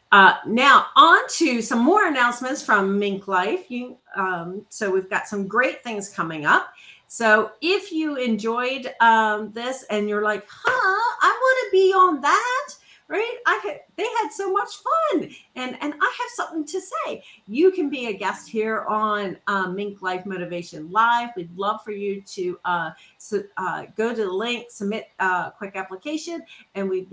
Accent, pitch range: American, 185-250 Hz